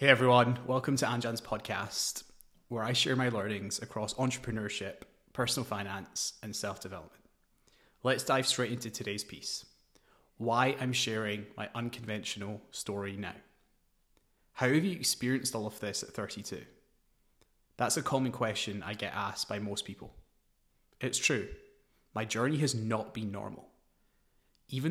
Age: 20-39